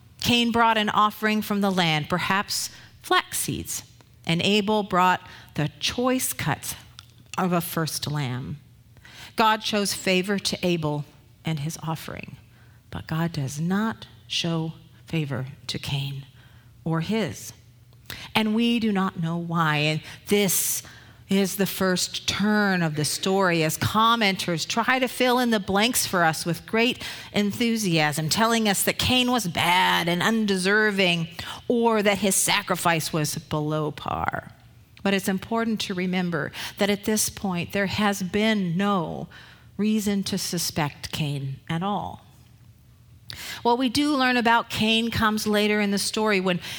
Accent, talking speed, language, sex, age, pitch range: American, 140 wpm, English, female, 40-59, 150-220 Hz